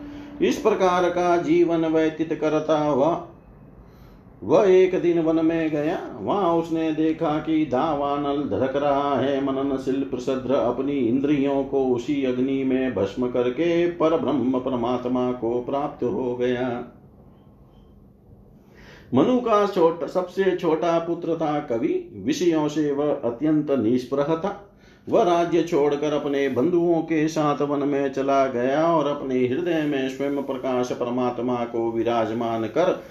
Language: Hindi